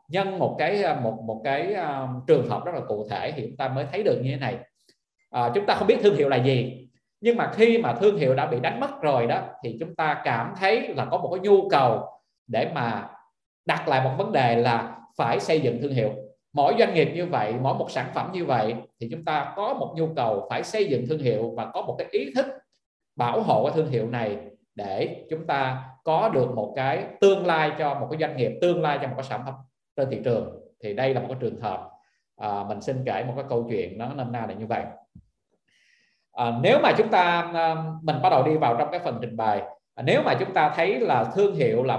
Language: Vietnamese